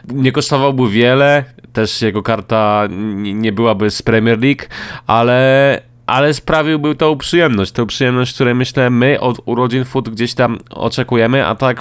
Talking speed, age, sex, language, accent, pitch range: 145 wpm, 20-39, male, Polish, native, 105-130 Hz